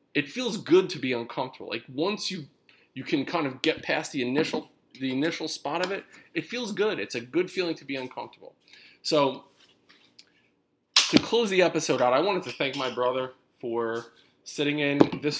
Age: 20-39